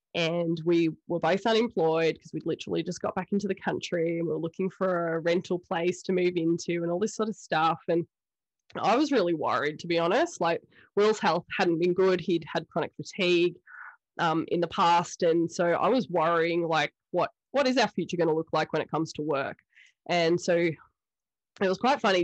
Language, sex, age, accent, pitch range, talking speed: English, female, 20-39, Australian, 165-210 Hz, 210 wpm